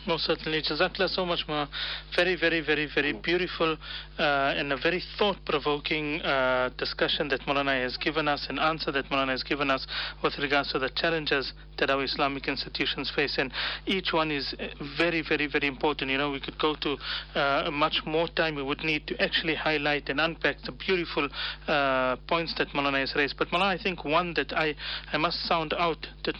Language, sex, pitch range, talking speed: English, male, 140-165 Hz, 200 wpm